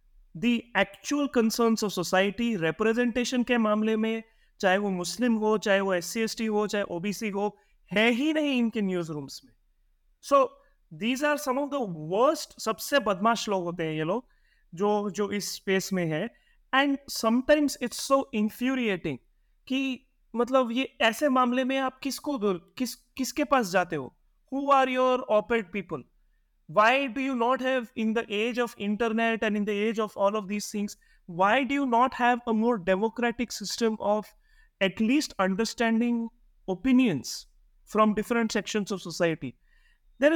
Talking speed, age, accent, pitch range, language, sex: 170 wpm, 30-49, native, 195-255 Hz, Hindi, male